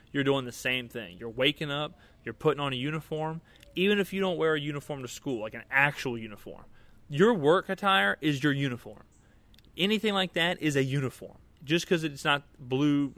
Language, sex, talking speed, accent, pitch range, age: English, male, 195 wpm, American, 120-160 Hz, 20-39